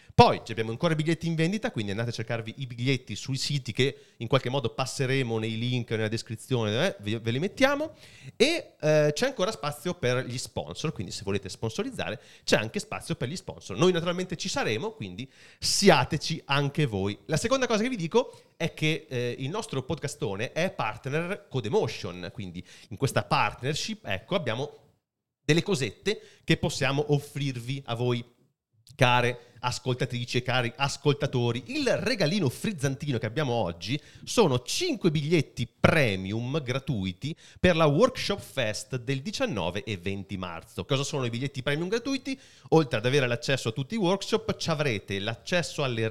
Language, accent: Italian, native